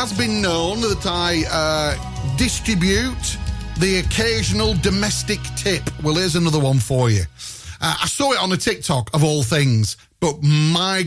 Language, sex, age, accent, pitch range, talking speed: English, male, 40-59, British, 120-185 Hz, 165 wpm